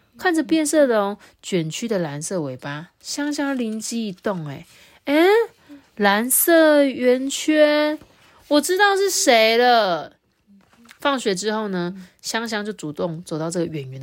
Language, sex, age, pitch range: Chinese, female, 20-39, 170-270 Hz